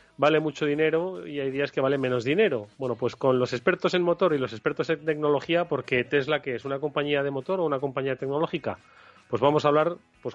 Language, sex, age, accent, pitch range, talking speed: Spanish, male, 30-49, Spanish, 125-150 Hz, 225 wpm